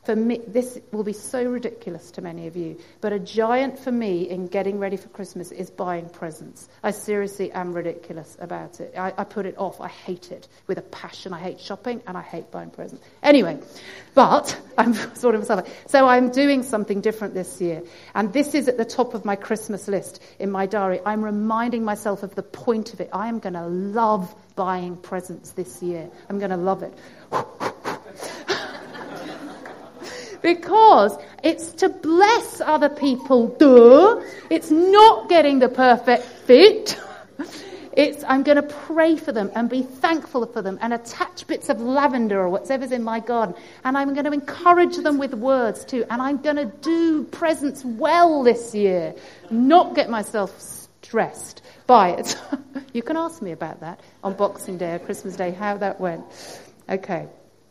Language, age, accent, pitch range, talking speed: English, 40-59, British, 195-280 Hz, 180 wpm